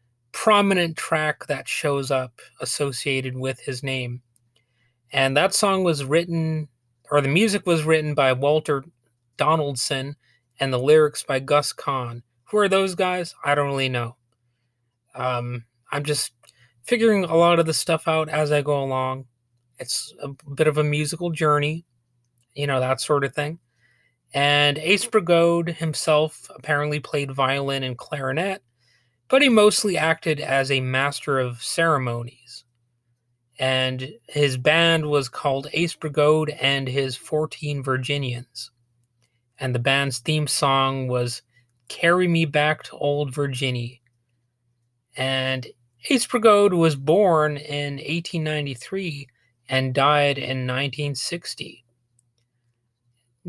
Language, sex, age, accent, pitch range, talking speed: English, male, 30-49, American, 120-155 Hz, 130 wpm